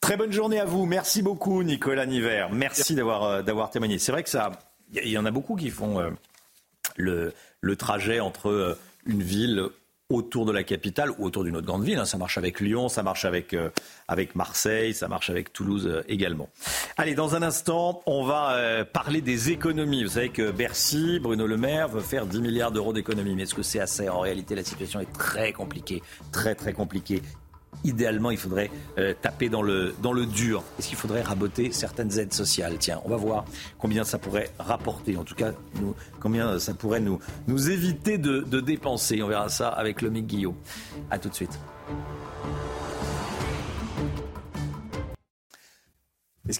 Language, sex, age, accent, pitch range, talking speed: French, male, 50-69, French, 95-125 Hz, 180 wpm